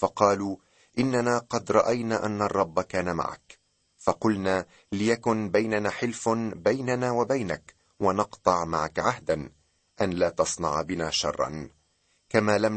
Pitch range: 90-120 Hz